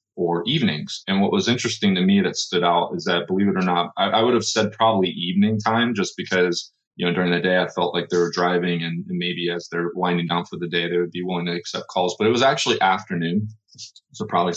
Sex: male